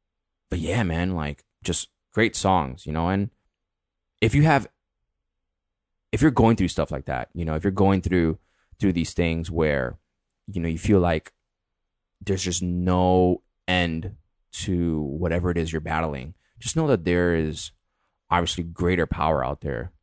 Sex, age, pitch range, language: male, 20-39, 80-95 Hz, English